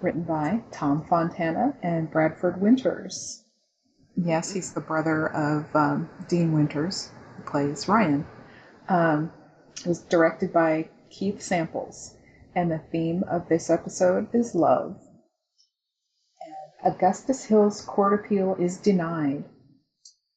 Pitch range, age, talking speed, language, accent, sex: 165-210 Hz, 30-49, 115 wpm, English, American, female